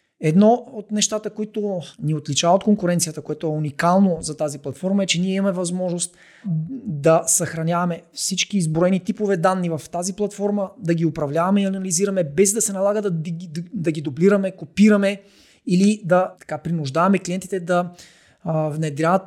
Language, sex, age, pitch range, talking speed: Bulgarian, male, 30-49, 165-205 Hz, 160 wpm